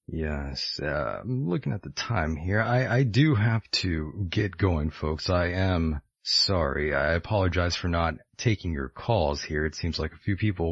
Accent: American